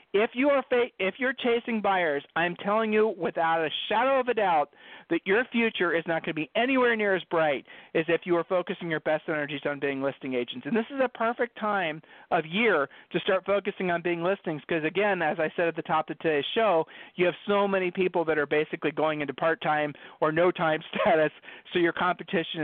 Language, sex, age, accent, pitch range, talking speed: English, male, 40-59, American, 155-195 Hz, 220 wpm